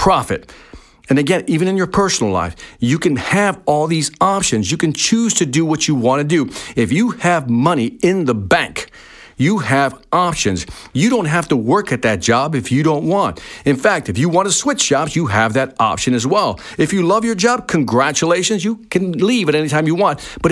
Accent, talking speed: American, 220 wpm